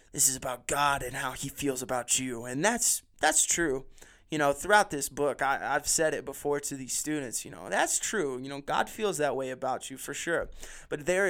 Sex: male